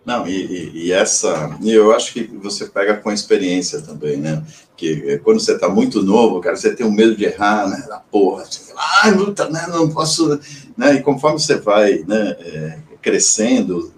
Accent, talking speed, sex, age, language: Brazilian, 200 wpm, male, 50-69, Portuguese